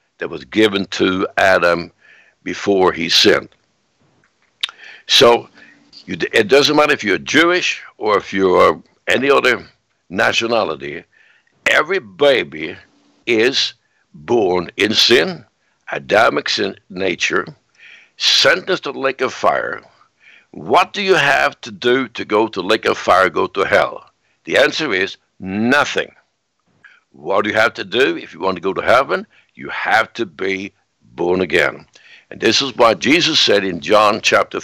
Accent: American